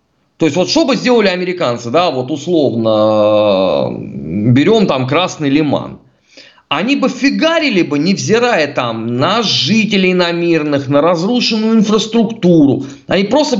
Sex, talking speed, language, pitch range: male, 130 wpm, Russian, 140-195 Hz